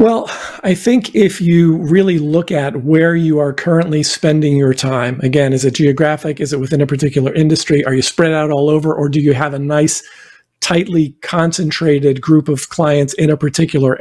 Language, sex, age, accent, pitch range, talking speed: English, male, 50-69, American, 145-170 Hz, 195 wpm